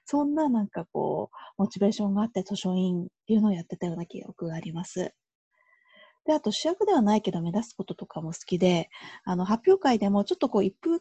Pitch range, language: 180-260 Hz, Japanese